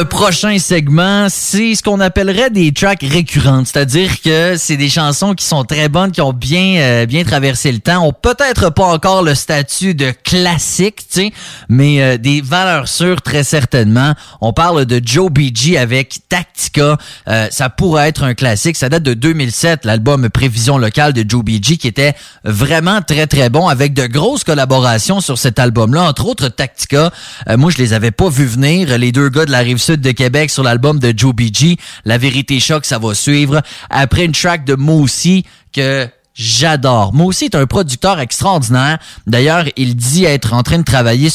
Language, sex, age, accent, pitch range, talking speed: English, male, 30-49, Canadian, 125-170 Hz, 190 wpm